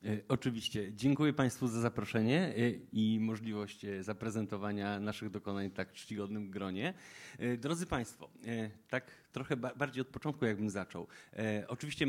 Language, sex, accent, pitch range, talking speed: Polish, male, native, 110-135 Hz, 120 wpm